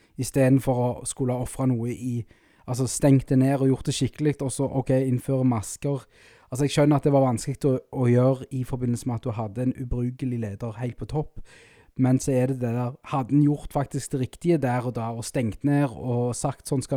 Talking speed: 225 wpm